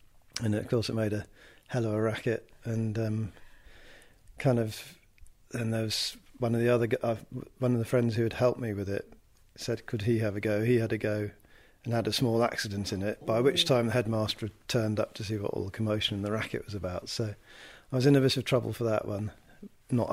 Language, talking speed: English, 235 wpm